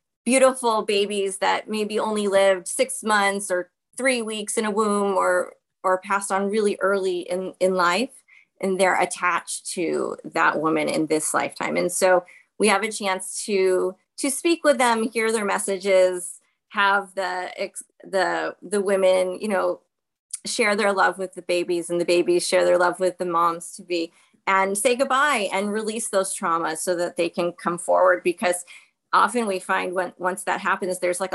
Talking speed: 175 wpm